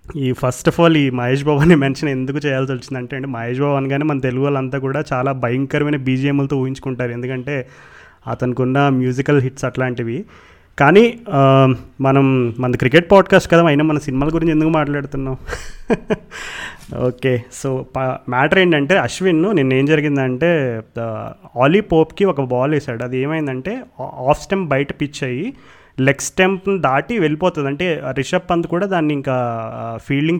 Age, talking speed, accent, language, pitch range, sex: 30-49, 145 wpm, native, Telugu, 130-170 Hz, male